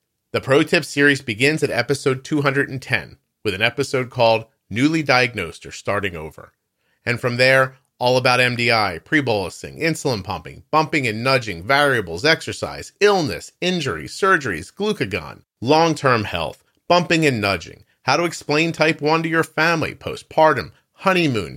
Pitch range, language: 110-145 Hz, English